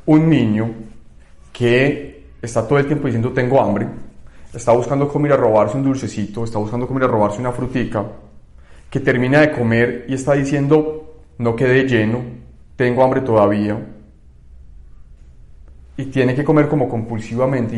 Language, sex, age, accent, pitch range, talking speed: Spanish, male, 30-49, Colombian, 110-135 Hz, 145 wpm